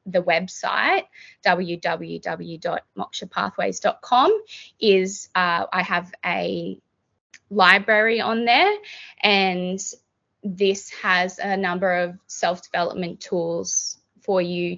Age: 20-39